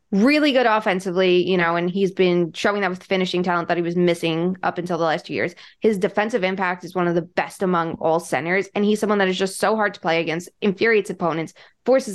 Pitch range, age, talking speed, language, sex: 175-205 Hz, 20-39, 235 wpm, English, female